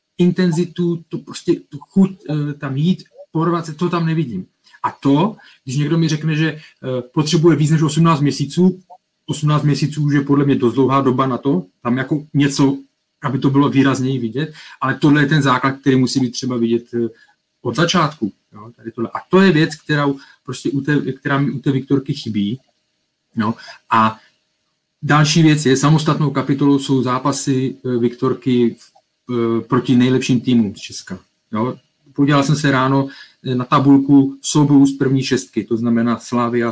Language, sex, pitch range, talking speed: Czech, male, 120-150 Hz, 160 wpm